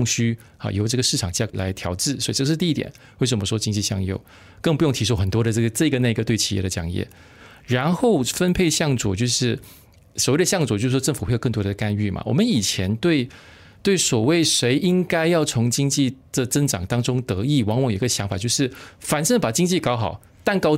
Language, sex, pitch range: Chinese, male, 110-155 Hz